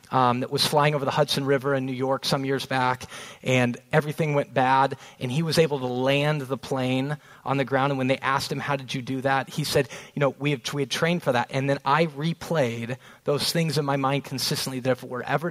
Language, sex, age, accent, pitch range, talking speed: English, male, 30-49, American, 130-170 Hz, 250 wpm